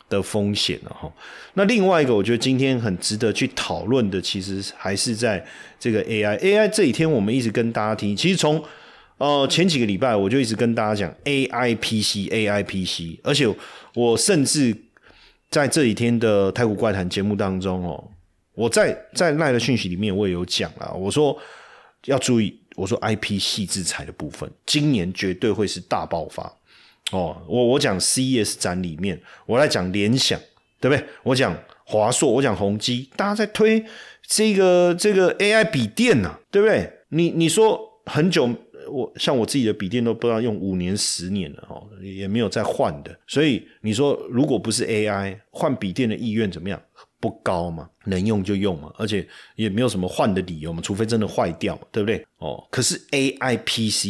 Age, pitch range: 30-49, 100-140 Hz